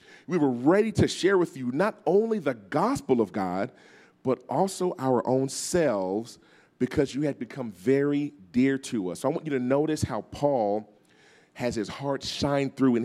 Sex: male